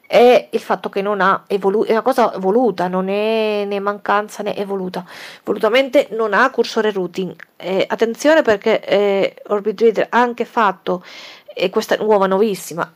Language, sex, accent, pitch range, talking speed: Italian, female, native, 185-220 Hz, 165 wpm